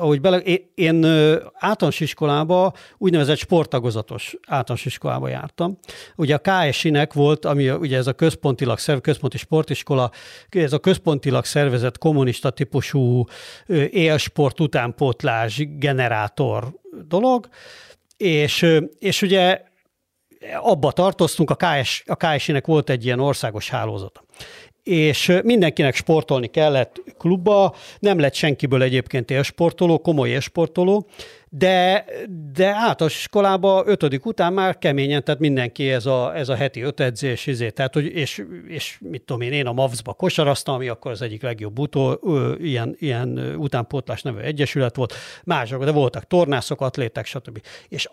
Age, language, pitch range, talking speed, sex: 50-69, Hungarian, 130-170 Hz, 135 wpm, male